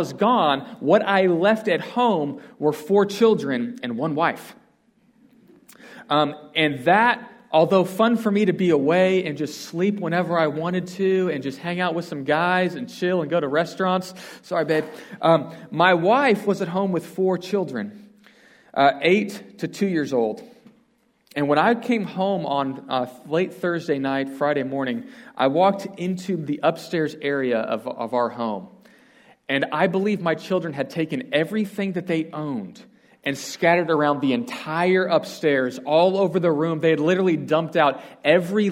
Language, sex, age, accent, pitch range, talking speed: English, male, 40-59, American, 155-205 Hz, 170 wpm